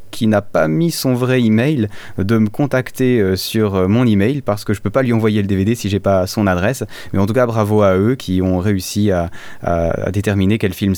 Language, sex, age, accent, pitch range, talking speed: French, male, 20-39, French, 95-115 Hz, 240 wpm